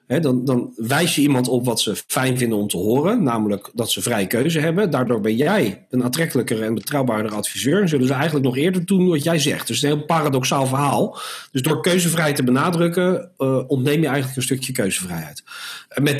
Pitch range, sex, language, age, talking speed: 125-170 Hz, male, Dutch, 40-59, 215 wpm